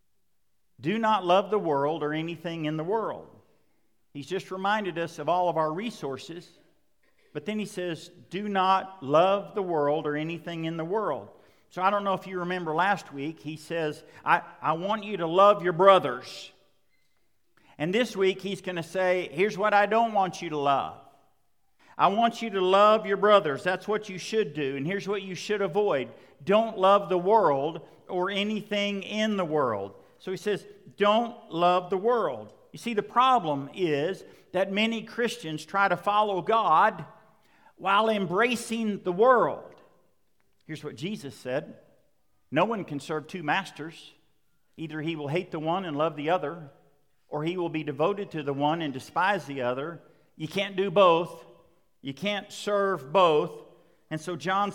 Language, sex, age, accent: English, male, 50-69, American